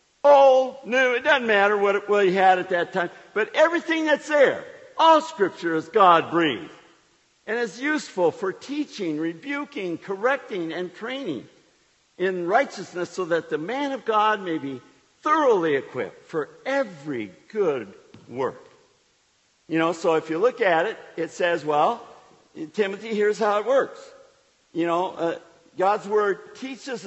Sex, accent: male, American